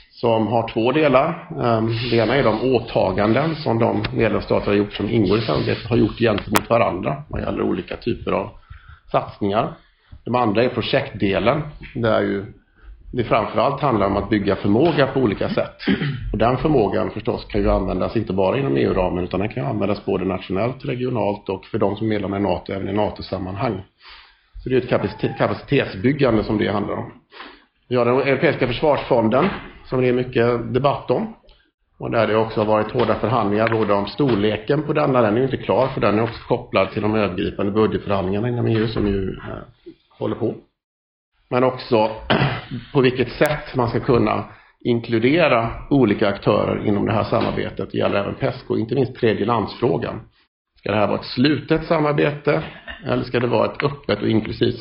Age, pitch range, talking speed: 50-69, 105-125 Hz, 175 wpm